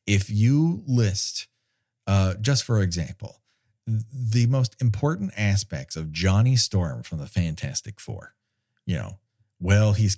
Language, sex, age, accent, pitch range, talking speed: English, male, 40-59, American, 100-130 Hz, 130 wpm